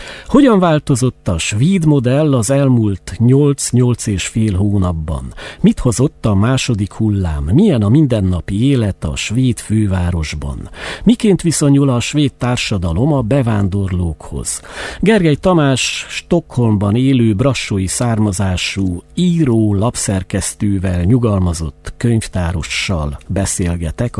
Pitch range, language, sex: 90-125 Hz, Hungarian, male